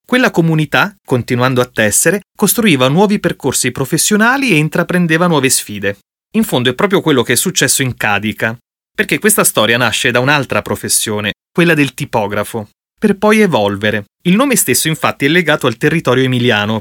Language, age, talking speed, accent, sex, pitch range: Italian, 30-49, 160 wpm, native, male, 120-170 Hz